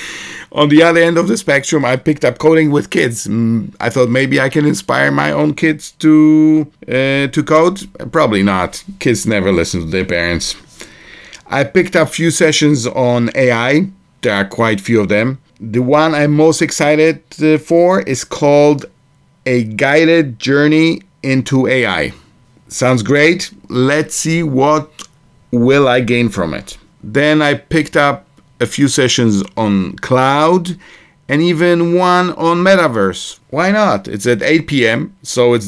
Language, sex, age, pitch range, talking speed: English, male, 50-69, 120-160 Hz, 160 wpm